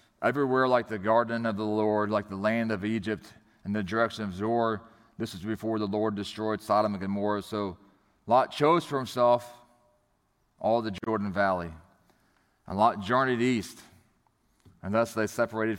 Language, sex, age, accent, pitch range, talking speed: English, male, 30-49, American, 100-115 Hz, 165 wpm